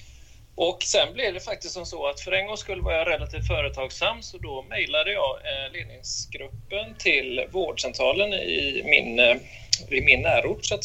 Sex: male